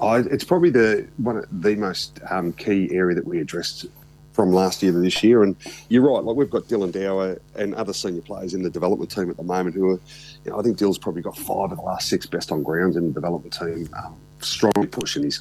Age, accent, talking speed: 30-49, Australian, 255 wpm